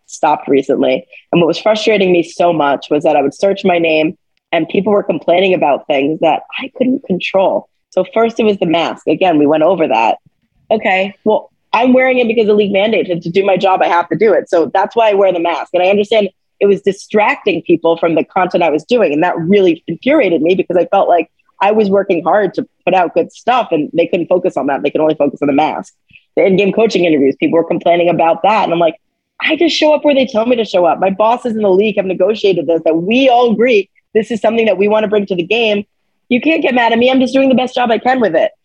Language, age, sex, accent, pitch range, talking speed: English, 20-39, female, American, 170-225 Hz, 260 wpm